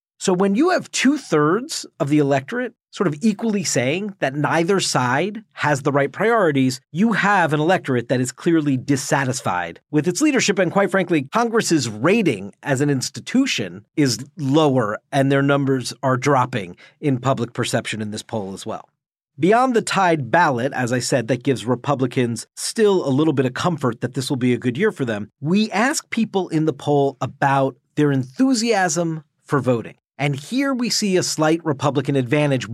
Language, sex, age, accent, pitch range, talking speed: English, male, 40-59, American, 135-180 Hz, 180 wpm